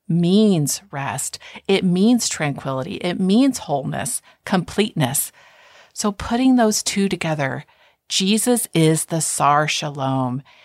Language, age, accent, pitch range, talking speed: English, 50-69, American, 155-205 Hz, 105 wpm